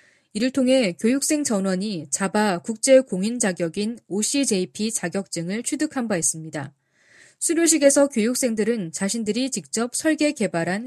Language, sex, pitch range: Korean, female, 180-260 Hz